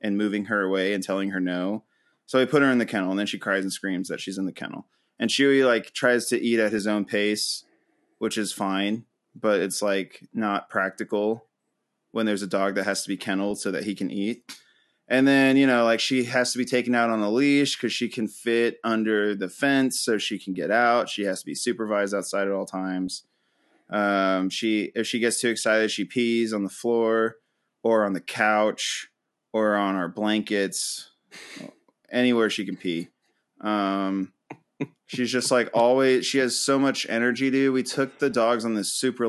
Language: English